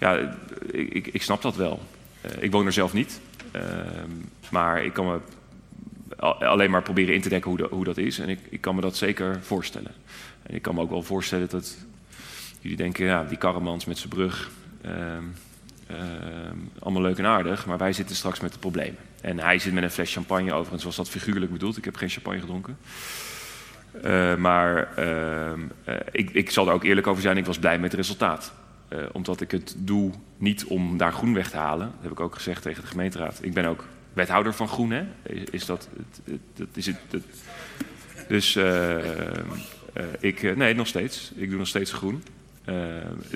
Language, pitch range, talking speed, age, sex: Dutch, 90-100 Hz, 195 wpm, 30-49, male